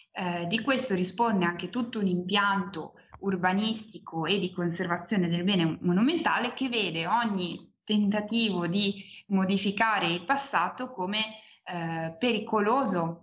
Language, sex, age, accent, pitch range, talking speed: Italian, female, 20-39, native, 175-210 Hz, 120 wpm